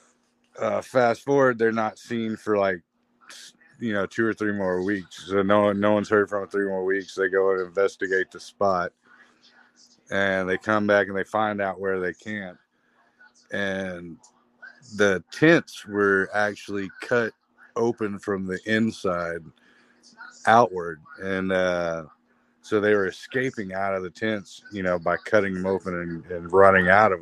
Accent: American